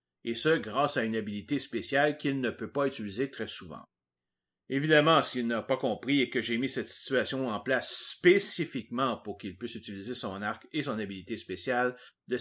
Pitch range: 105-140 Hz